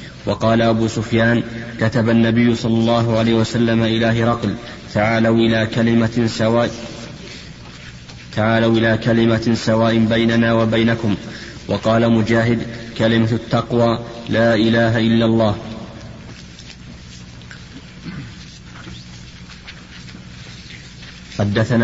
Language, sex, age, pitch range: Arabic, male, 30-49, 110-115 Hz